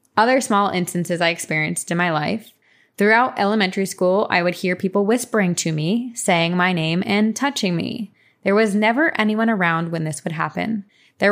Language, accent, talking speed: English, American, 180 wpm